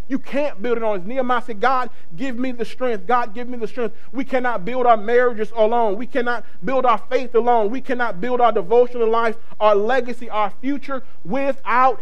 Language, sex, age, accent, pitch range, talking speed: English, male, 40-59, American, 180-235 Hz, 205 wpm